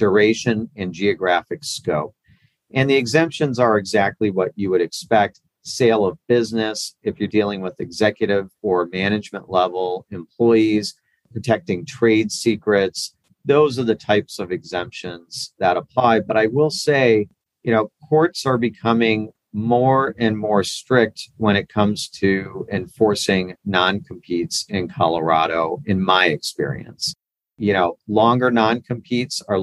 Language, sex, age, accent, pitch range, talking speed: English, male, 50-69, American, 100-120 Hz, 130 wpm